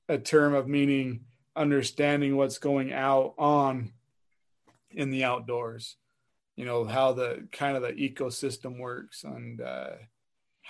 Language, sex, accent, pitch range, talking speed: English, male, American, 125-140 Hz, 130 wpm